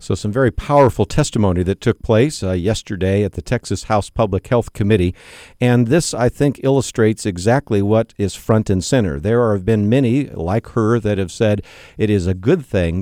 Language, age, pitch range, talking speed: English, 50-69, 90-115 Hz, 195 wpm